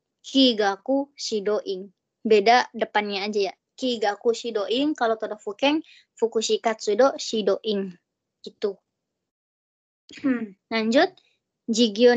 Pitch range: 210-250 Hz